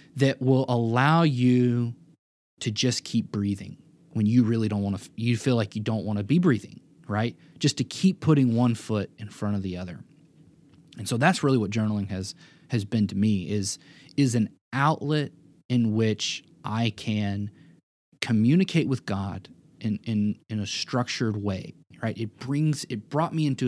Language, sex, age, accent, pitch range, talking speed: English, male, 20-39, American, 110-150 Hz, 175 wpm